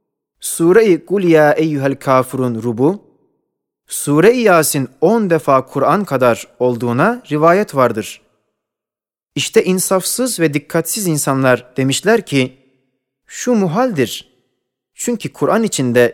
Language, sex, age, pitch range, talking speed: Turkish, male, 30-49, 125-200 Hz, 95 wpm